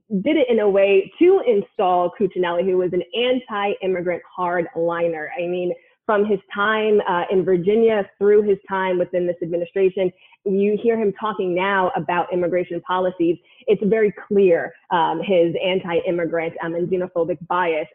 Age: 20-39